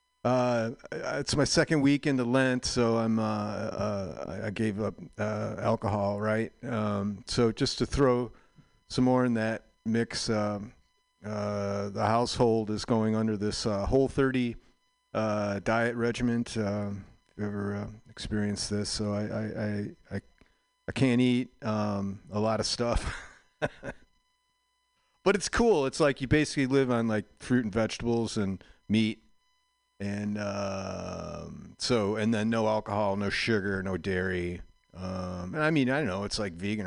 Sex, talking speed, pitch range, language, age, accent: male, 160 wpm, 105-135 Hz, English, 40-59, American